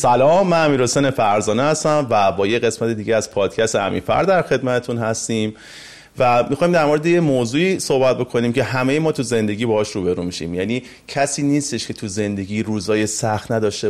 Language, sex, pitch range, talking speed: Persian, male, 105-145 Hz, 175 wpm